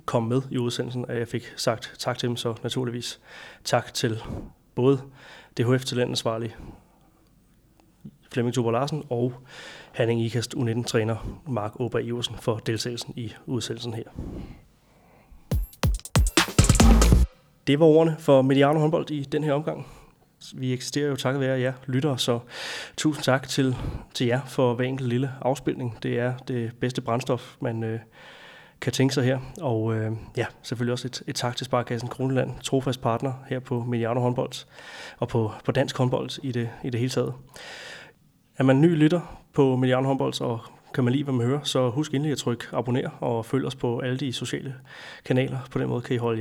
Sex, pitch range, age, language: male, 120-135 Hz, 30-49, Danish